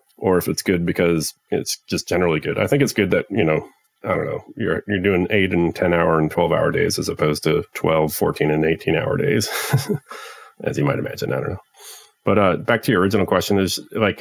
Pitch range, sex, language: 85-100 Hz, male, English